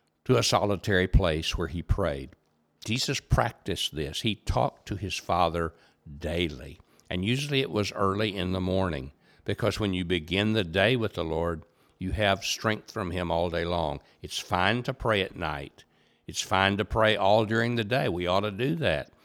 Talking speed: 185 wpm